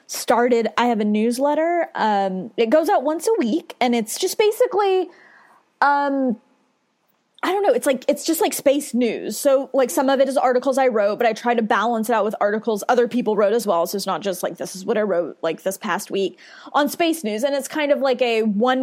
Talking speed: 235 wpm